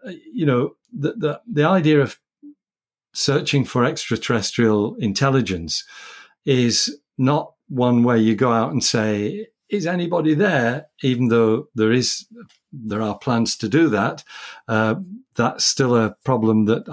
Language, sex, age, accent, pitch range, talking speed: English, male, 50-69, British, 110-145 Hz, 140 wpm